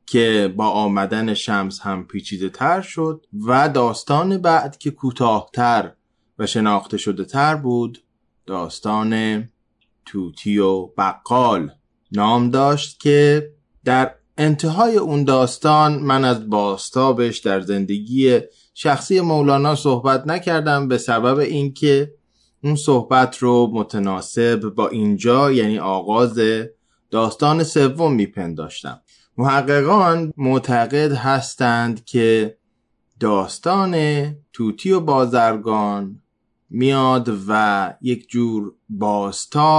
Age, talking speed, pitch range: 20-39, 100 wpm, 110-145 Hz